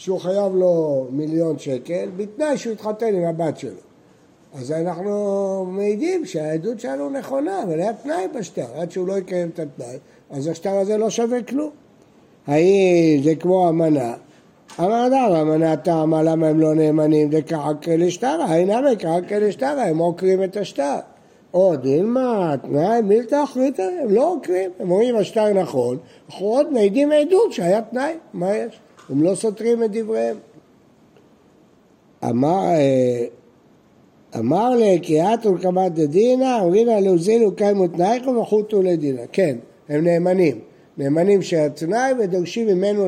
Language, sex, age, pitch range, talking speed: Hebrew, male, 60-79, 160-220 Hz, 135 wpm